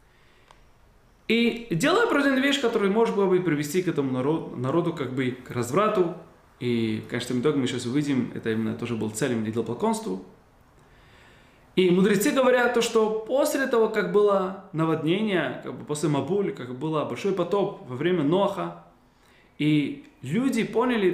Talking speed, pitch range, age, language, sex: 155 wpm, 135-180 Hz, 20-39, Russian, male